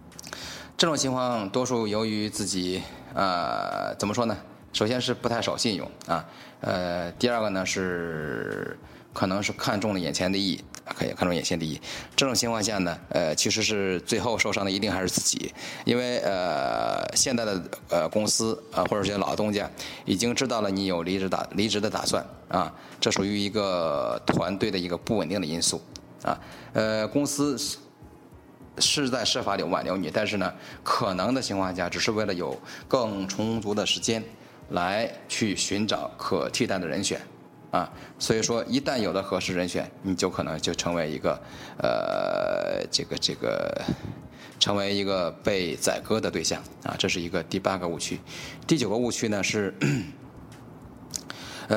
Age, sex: 20-39, male